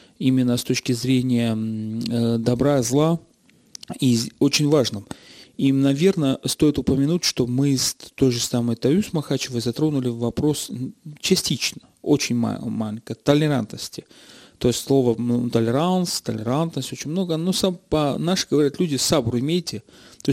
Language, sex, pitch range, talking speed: Russian, male, 120-150 Hz, 130 wpm